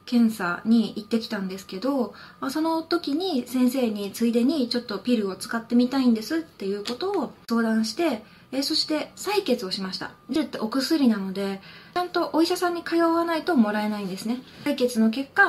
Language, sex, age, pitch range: Japanese, female, 20-39, 220-295 Hz